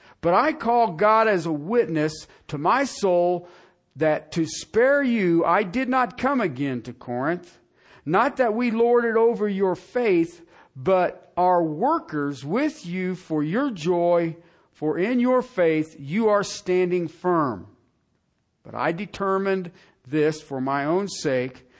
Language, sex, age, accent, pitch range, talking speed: English, male, 50-69, American, 155-205 Hz, 145 wpm